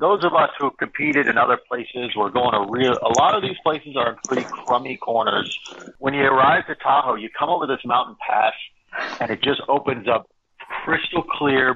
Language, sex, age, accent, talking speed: English, male, 50-69, American, 210 wpm